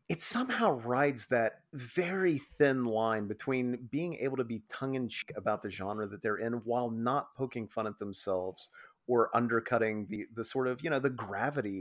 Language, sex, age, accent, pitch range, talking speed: English, male, 30-49, American, 110-145 Hz, 180 wpm